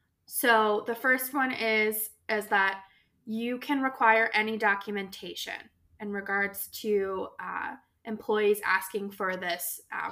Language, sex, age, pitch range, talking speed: English, female, 20-39, 205-245 Hz, 125 wpm